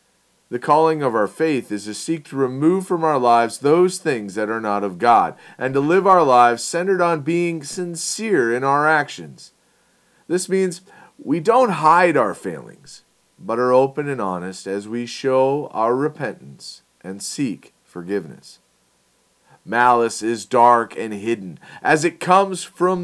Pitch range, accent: 110-155 Hz, American